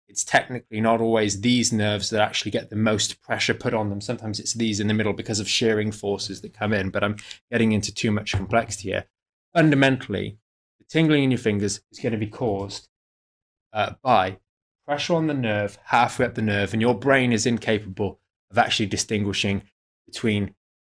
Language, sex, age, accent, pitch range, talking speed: English, male, 20-39, British, 105-125 Hz, 190 wpm